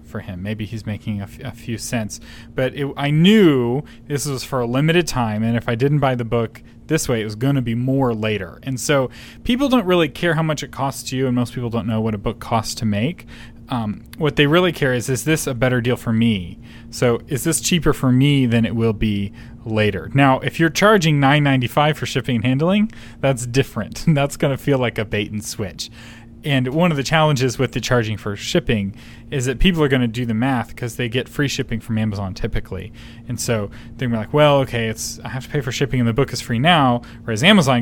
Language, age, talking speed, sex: English, 30-49, 245 wpm, male